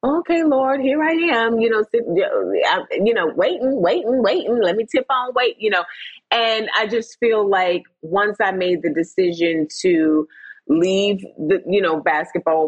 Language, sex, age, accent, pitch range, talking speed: English, female, 30-49, American, 180-245 Hz, 170 wpm